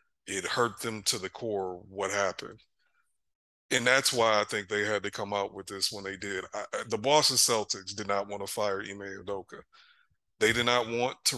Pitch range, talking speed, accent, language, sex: 105-130 Hz, 200 wpm, American, English, male